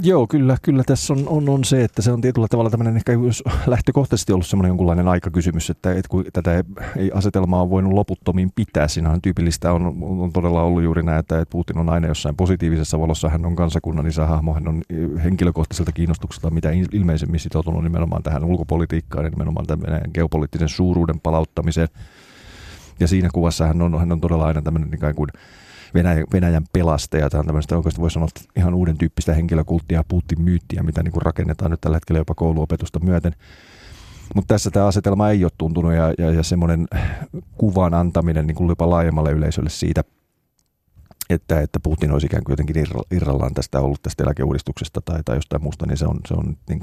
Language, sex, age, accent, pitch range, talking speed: Finnish, male, 30-49, native, 80-95 Hz, 175 wpm